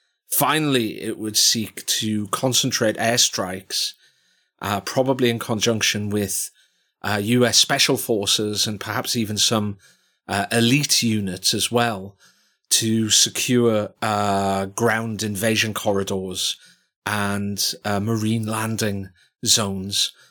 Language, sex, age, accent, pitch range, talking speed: English, male, 30-49, British, 100-120 Hz, 105 wpm